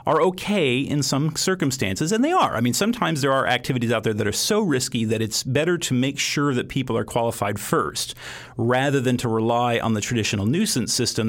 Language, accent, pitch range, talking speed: English, American, 115-140 Hz, 215 wpm